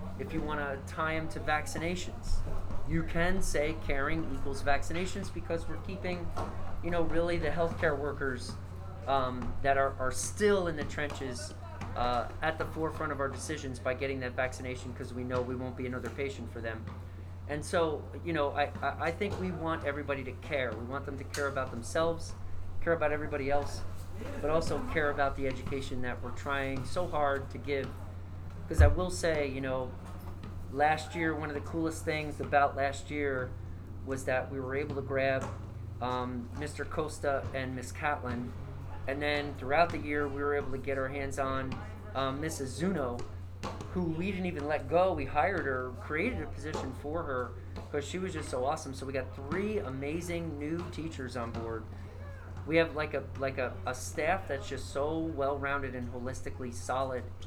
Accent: American